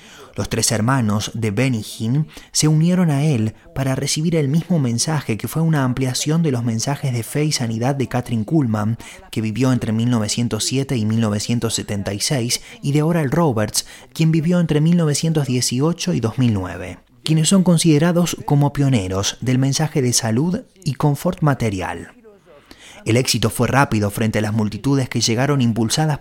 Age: 30-49